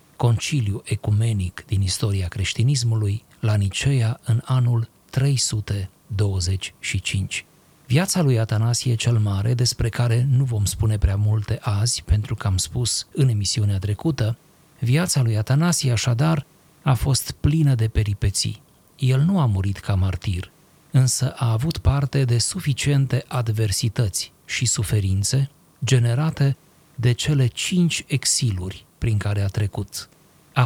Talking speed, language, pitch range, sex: 125 wpm, Romanian, 110-135 Hz, male